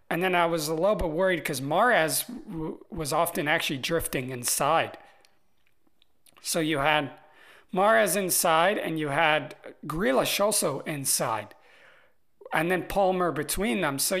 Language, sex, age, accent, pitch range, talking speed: English, male, 40-59, American, 145-170 Hz, 135 wpm